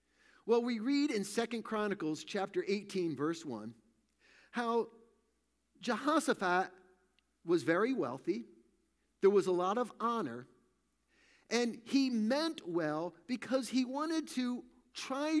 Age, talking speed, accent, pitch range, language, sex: 50-69, 115 wpm, American, 185-255 Hz, English, male